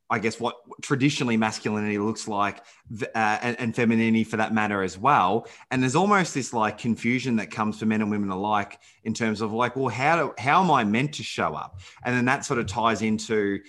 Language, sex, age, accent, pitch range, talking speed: English, male, 20-39, Australian, 105-120 Hz, 220 wpm